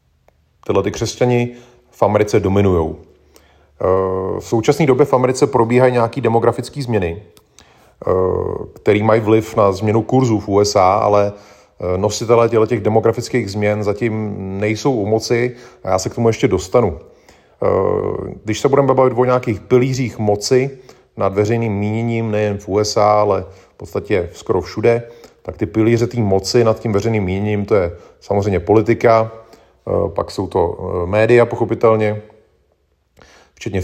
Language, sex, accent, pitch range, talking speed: Czech, male, native, 100-115 Hz, 135 wpm